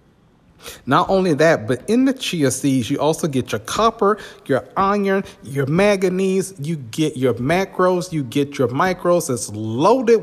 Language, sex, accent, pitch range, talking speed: English, male, American, 130-175 Hz, 160 wpm